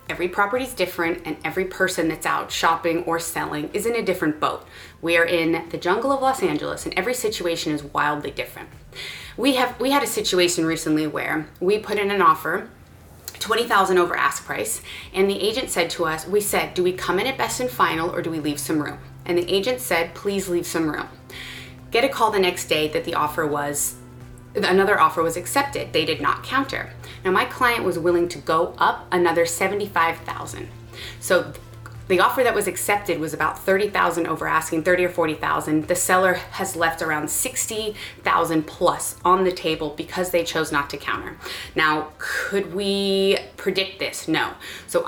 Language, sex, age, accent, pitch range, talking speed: English, female, 20-39, American, 160-195 Hz, 190 wpm